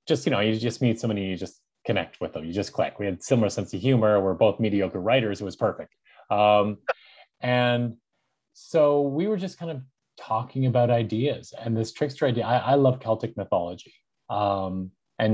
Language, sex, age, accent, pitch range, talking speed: English, male, 20-39, American, 105-135 Hz, 200 wpm